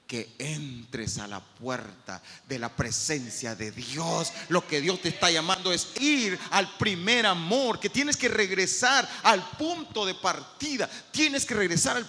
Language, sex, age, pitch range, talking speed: Spanish, male, 40-59, 170-275 Hz, 165 wpm